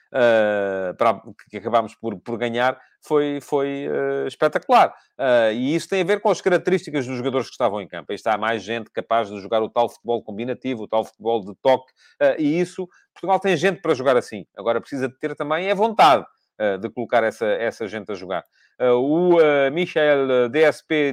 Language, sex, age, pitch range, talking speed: English, male, 30-49, 125-175 Hz, 200 wpm